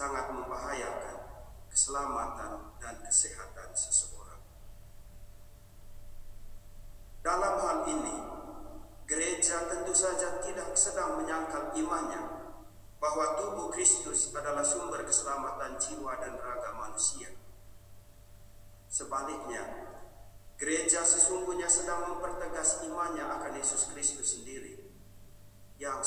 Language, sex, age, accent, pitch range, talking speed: Indonesian, male, 50-69, native, 100-165 Hz, 85 wpm